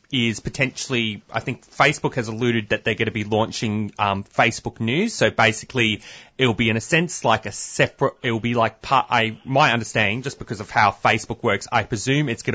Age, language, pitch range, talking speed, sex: 30-49, English, 110-130 Hz, 200 wpm, male